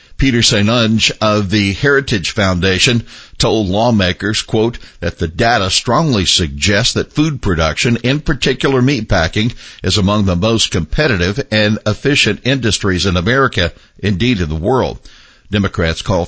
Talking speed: 135 wpm